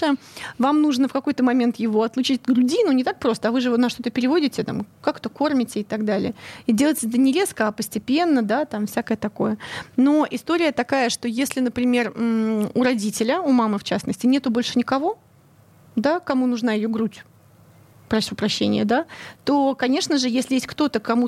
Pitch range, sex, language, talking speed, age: 225-275 Hz, female, Russian, 190 wpm, 30-49